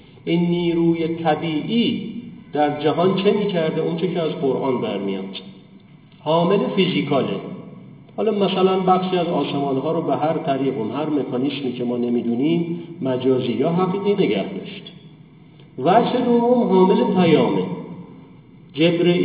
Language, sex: Persian, male